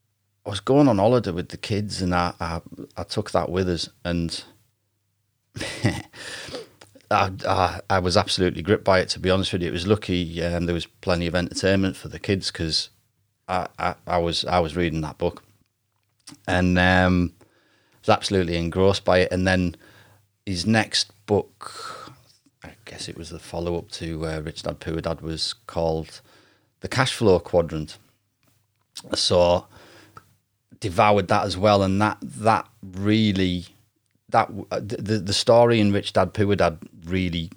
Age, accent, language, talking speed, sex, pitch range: 30-49, British, English, 165 wpm, male, 90-105 Hz